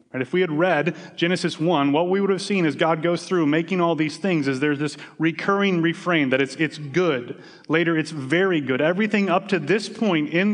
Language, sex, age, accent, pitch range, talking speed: English, male, 30-49, American, 155-195 Hz, 215 wpm